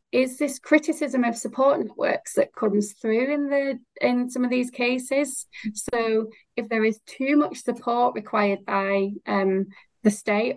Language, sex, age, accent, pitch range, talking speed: English, female, 20-39, British, 205-235 Hz, 160 wpm